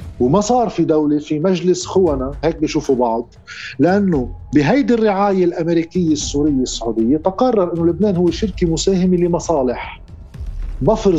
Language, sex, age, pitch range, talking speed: Arabic, male, 50-69, 140-185 Hz, 130 wpm